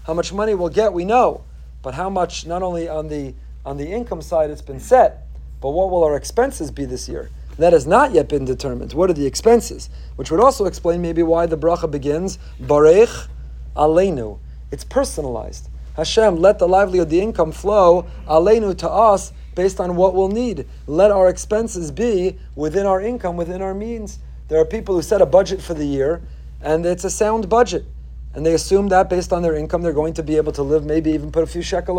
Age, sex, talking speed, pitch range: 40-59, male, 210 wpm, 145-195 Hz